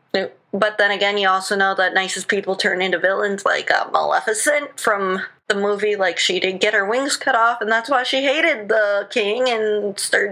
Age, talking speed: 20-39, 205 wpm